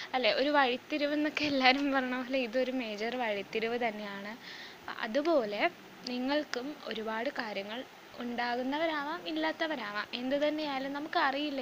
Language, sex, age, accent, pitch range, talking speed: Malayalam, female, 20-39, native, 230-290 Hz, 110 wpm